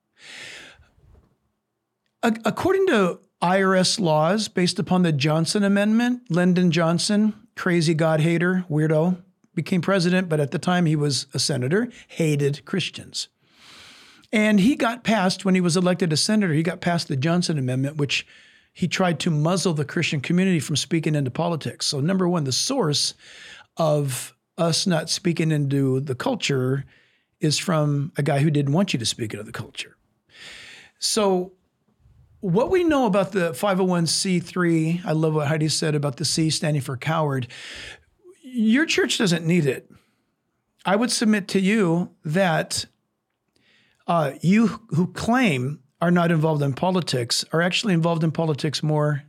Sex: male